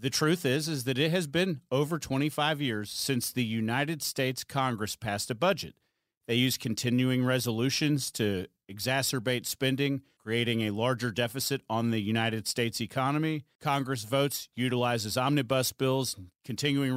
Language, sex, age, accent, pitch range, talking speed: English, male, 40-59, American, 120-150 Hz, 145 wpm